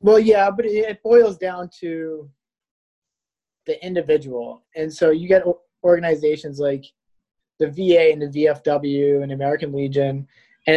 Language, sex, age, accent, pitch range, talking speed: English, male, 20-39, American, 140-175 Hz, 135 wpm